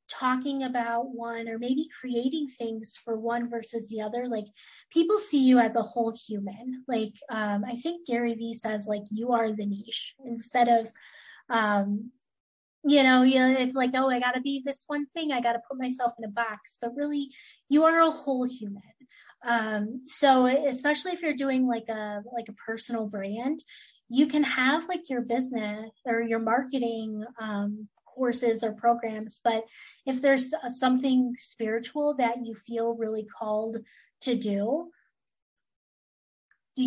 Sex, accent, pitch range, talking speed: female, American, 230-280 Hz, 160 wpm